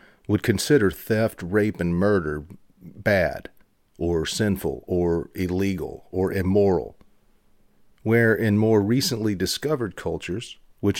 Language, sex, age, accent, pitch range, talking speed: English, male, 40-59, American, 90-105 Hz, 110 wpm